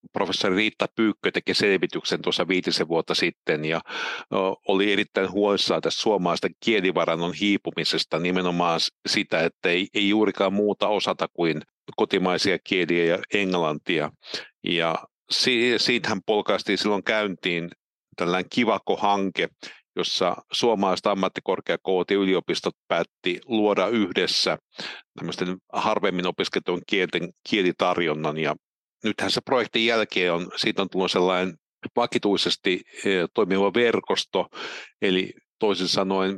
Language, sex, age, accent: Finnish, male, 50-69, native